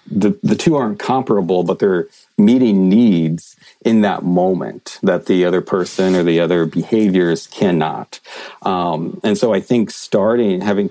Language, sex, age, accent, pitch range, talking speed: English, male, 40-59, American, 85-105 Hz, 155 wpm